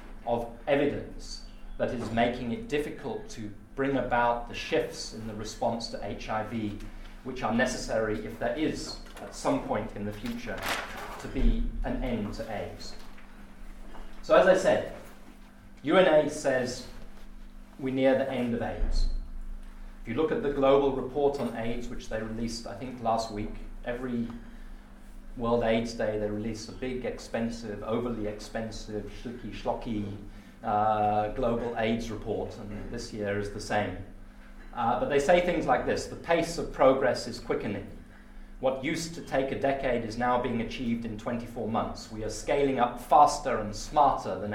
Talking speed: 160 wpm